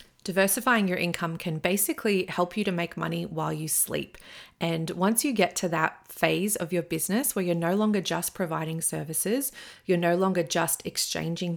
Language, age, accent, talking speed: English, 30-49, Australian, 180 wpm